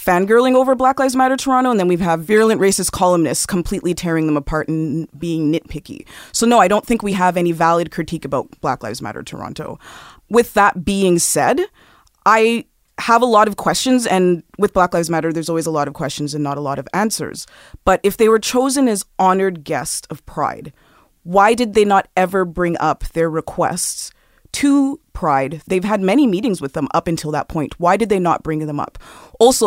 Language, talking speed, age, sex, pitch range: English, 205 wpm, 20-39, female, 160-205 Hz